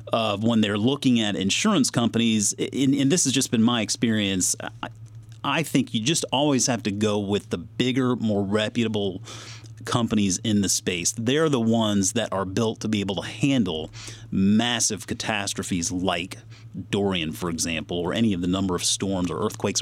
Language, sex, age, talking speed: English, male, 30-49, 175 wpm